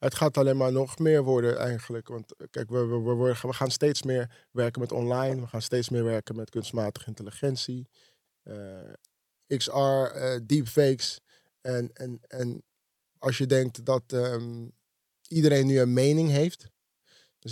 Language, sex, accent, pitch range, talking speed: Dutch, male, Dutch, 120-140 Hz, 155 wpm